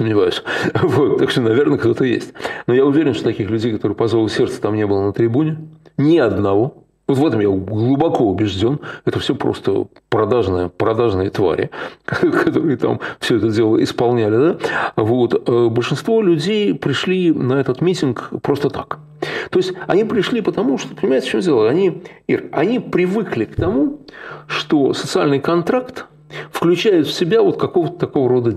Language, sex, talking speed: Russian, male, 160 wpm